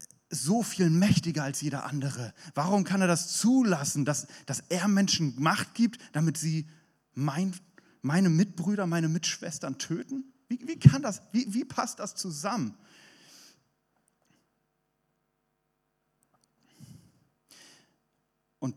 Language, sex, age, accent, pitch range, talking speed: German, male, 40-59, German, 120-170 Hz, 100 wpm